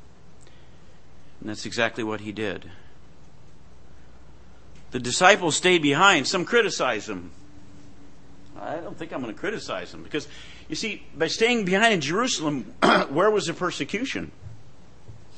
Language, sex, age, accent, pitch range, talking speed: English, male, 50-69, American, 135-195 Hz, 130 wpm